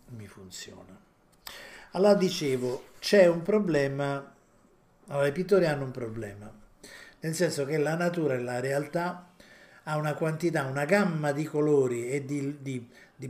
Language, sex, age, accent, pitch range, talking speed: Italian, male, 50-69, native, 135-180 Hz, 145 wpm